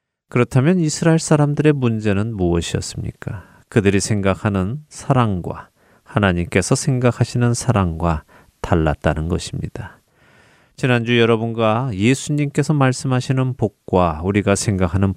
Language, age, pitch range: Korean, 30-49, 90-125 Hz